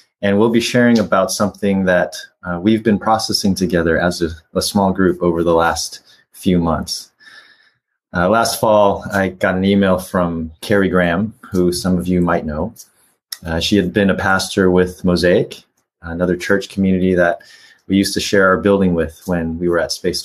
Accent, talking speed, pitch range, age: American, 185 wpm, 90-110 Hz, 30-49